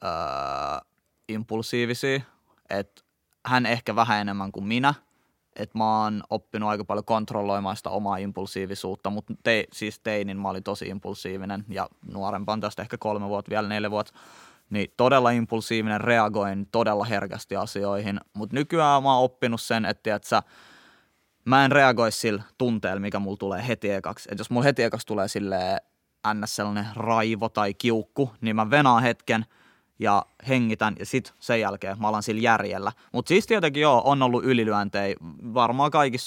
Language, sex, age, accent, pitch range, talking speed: Finnish, male, 20-39, native, 105-120 Hz, 155 wpm